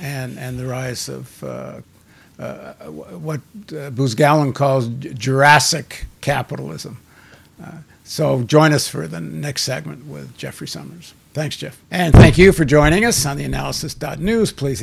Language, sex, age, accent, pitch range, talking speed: English, male, 60-79, American, 130-160 Hz, 145 wpm